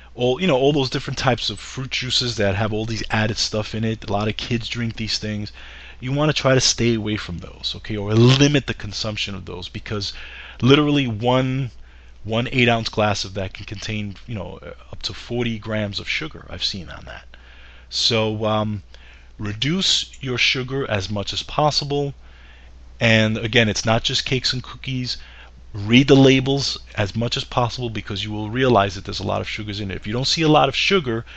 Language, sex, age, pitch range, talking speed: English, male, 30-49, 95-125 Hz, 205 wpm